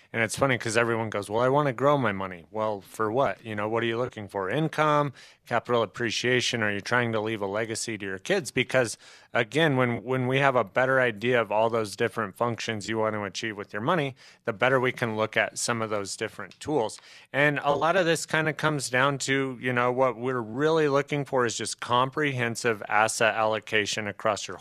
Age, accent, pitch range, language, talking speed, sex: 30-49, American, 110-130 Hz, English, 225 wpm, male